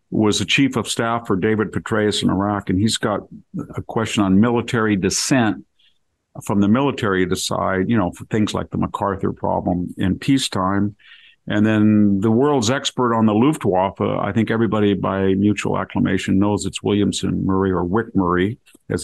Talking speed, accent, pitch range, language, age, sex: 175 wpm, American, 95-110 Hz, English, 50-69, male